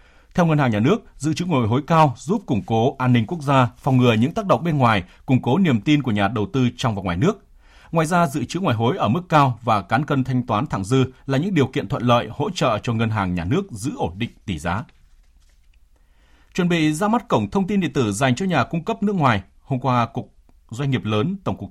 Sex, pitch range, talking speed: male, 105-150 Hz, 260 wpm